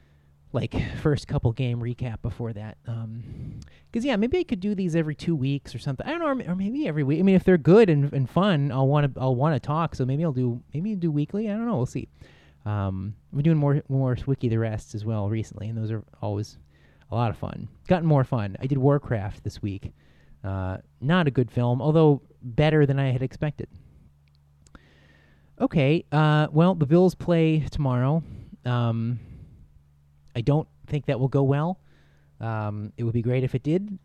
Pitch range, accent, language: 105-165 Hz, American, English